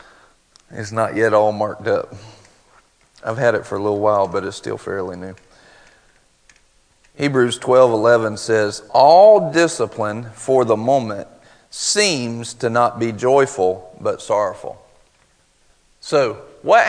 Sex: male